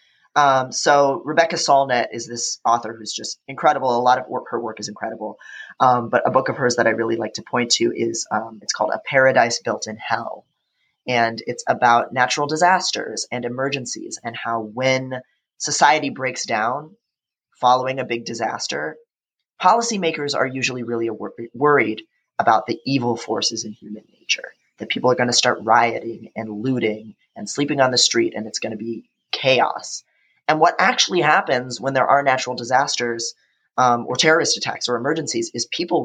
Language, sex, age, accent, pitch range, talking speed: English, male, 30-49, American, 115-140 Hz, 175 wpm